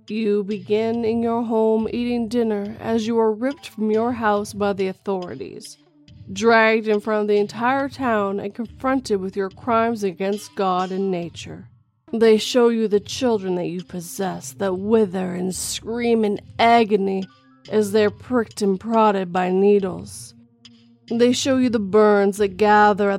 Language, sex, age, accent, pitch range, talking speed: English, female, 30-49, American, 180-225 Hz, 165 wpm